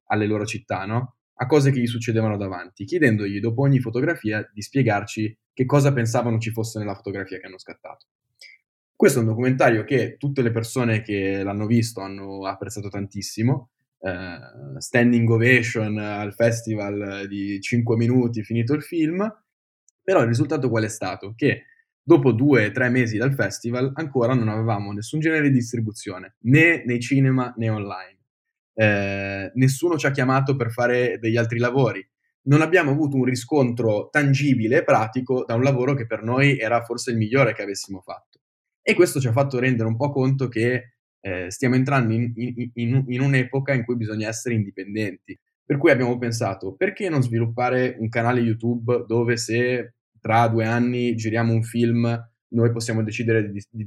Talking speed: 170 wpm